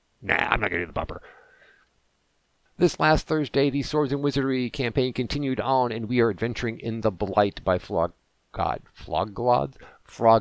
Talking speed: 180 wpm